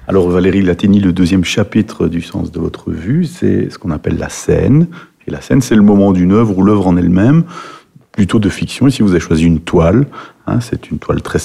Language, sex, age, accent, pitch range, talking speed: French, male, 50-69, French, 90-115 Hz, 230 wpm